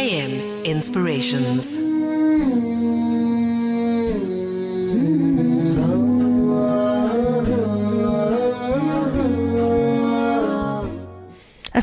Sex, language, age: female, English, 30-49